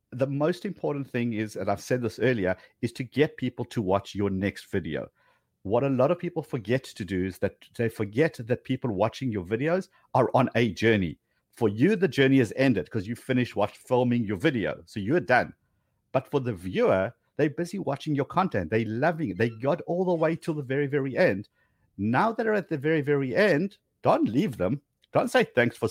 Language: English